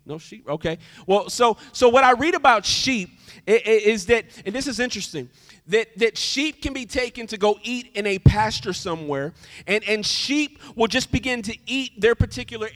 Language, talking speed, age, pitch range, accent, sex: English, 190 wpm, 40-59, 205-280 Hz, American, male